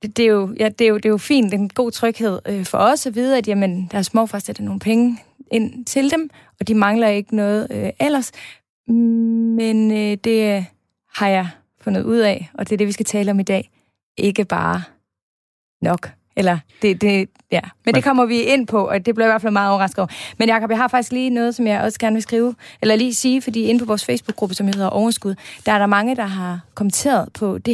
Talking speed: 235 wpm